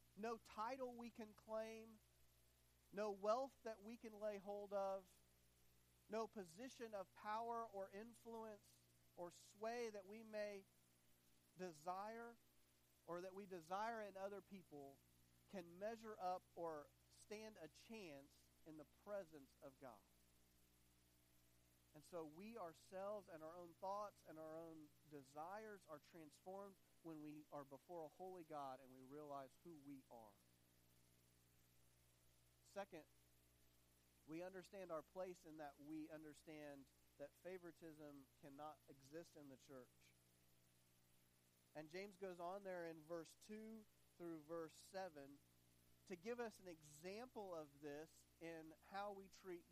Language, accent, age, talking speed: English, American, 40-59, 130 wpm